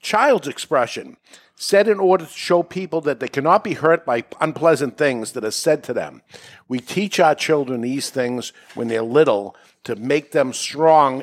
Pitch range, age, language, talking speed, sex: 130-175 Hz, 60-79, English, 180 wpm, male